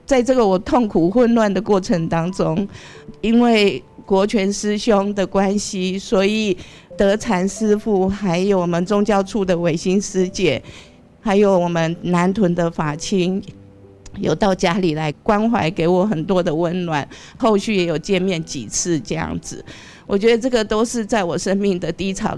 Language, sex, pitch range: Chinese, female, 180-220 Hz